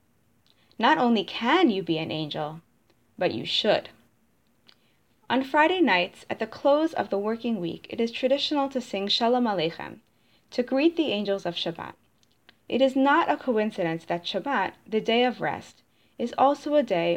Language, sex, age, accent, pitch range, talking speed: English, female, 20-39, American, 175-255 Hz, 170 wpm